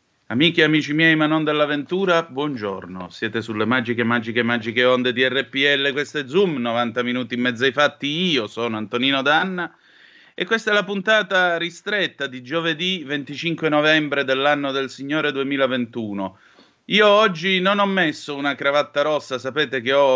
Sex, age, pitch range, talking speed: male, 30-49, 125-165 Hz, 160 wpm